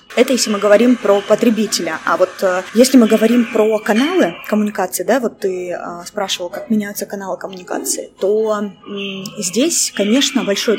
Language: Russian